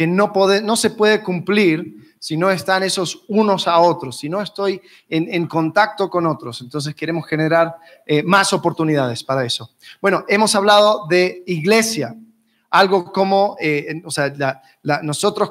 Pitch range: 165-220 Hz